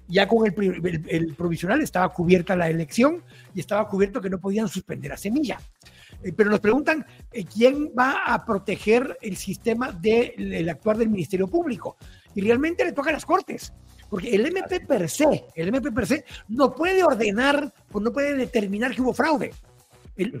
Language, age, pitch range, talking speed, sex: Spanish, 60-79, 195-275 Hz, 175 wpm, male